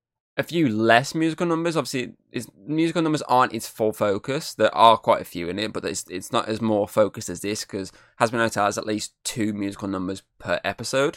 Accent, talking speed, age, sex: British, 210 wpm, 10-29, male